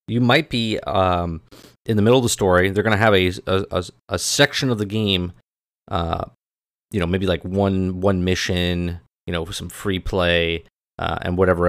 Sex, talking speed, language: male, 190 wpm, English